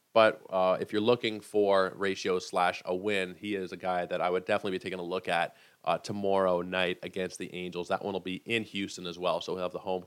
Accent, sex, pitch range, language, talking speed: American, male, 95-120 Hz, English, 250 wpm